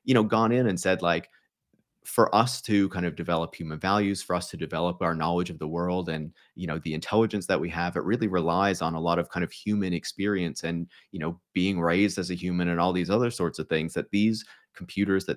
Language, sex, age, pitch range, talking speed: English, male, 30-49, 85-95 Hz, 240 wpm